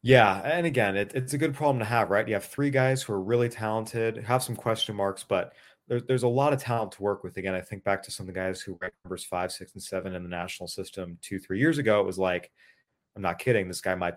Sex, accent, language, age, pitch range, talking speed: male, American, English, 30-49, 95-115 Hz, 275 wpm